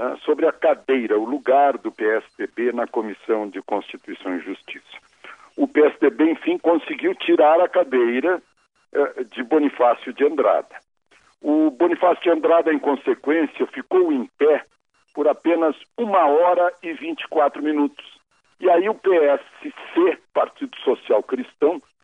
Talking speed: 135 wpm